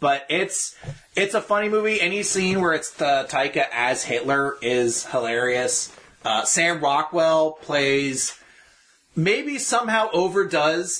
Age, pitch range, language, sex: 30-49, 125-175 Hz, English, male